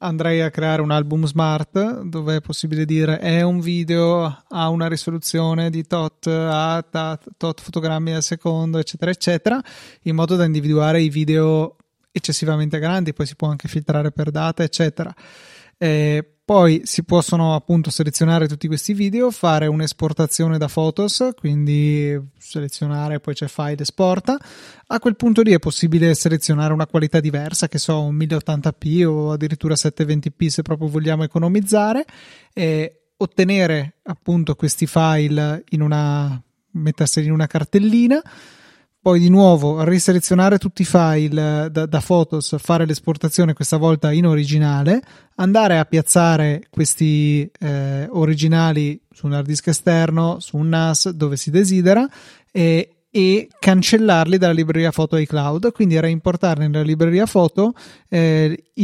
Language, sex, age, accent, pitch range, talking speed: Italian, male, 20-39, native, 155-175 Hz, 140 wpm